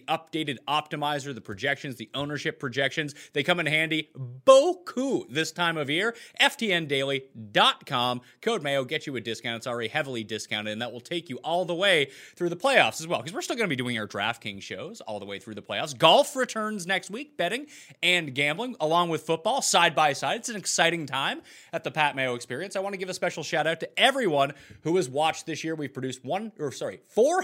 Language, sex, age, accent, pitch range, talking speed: English, male, 30-49, American, 130-200 Hz, 215 wpm